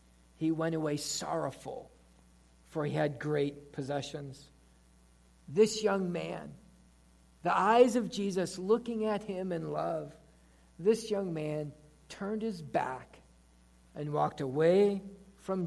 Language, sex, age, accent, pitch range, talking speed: English, male, 50-69, American, 145-245 Hz, 120 wpm